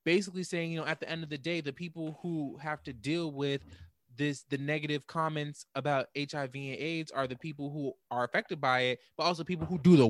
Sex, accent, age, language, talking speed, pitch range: male, American, 20-39, English, 230 wpm, 140-180 Hz